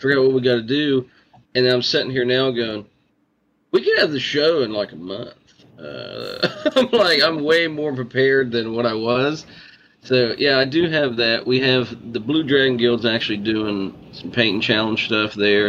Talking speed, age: 195 wpm, 40-59